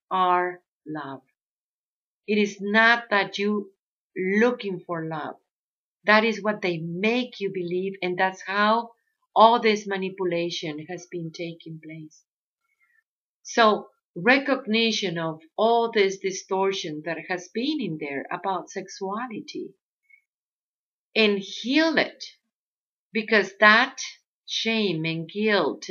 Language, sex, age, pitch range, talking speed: English, female, 50-69, 180-235 Hz, 110 wpm